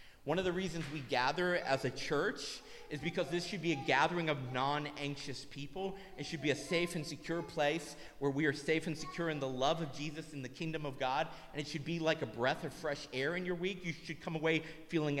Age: 30-49